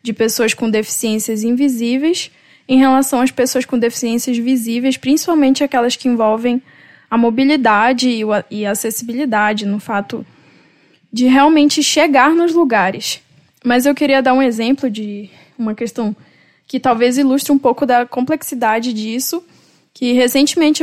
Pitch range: 225-280 Hz